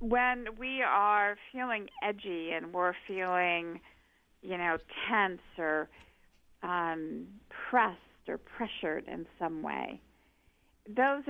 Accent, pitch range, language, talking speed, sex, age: American, 185-235 Hz, English, 105 wpm, female, 50-69